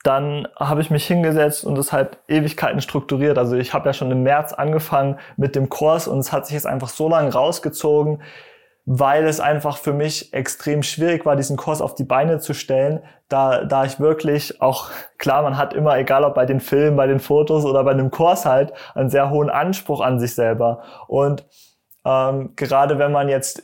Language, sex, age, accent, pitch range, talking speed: German, male, 30-49, German, 135-155 Hz, 205 wpm